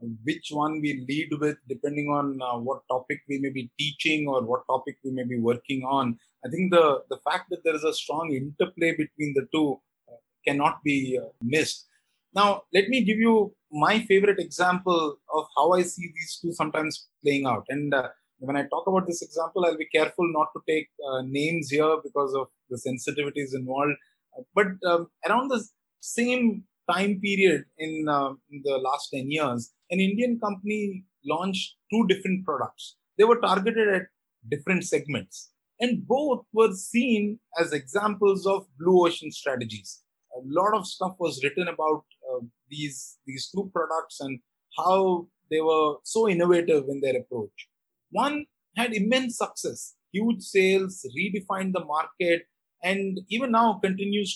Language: English